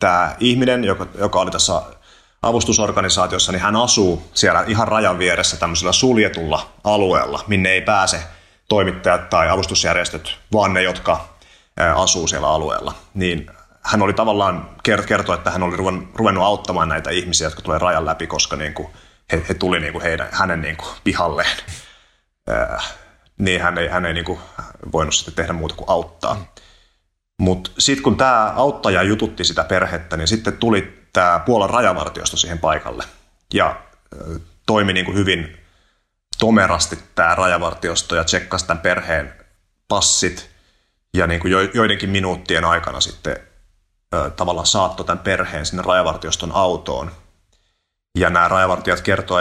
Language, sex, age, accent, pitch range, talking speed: Finnish, male, 30-49, native, 85-100 Hz, 140 wpm